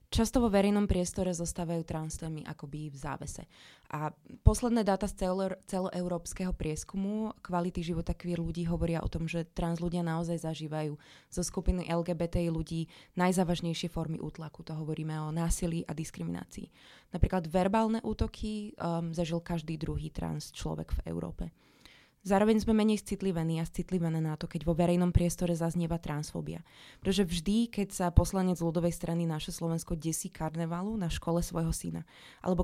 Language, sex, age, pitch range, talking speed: Slovak, female, 20-39, 165-185 Hz, 155 wpm